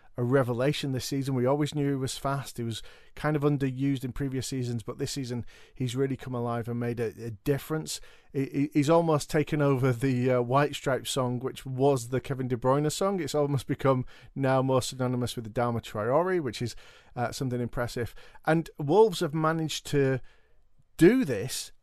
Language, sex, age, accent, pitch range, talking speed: English, male, 40-59, British, 125-150 Hz, 190 wpm